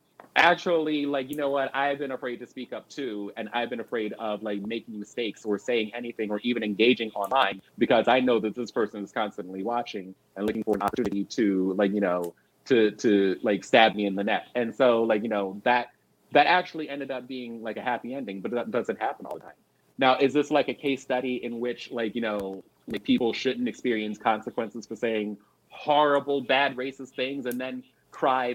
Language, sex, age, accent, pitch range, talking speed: English, male, 30-49, American, 105-130 Hz, 210 wpm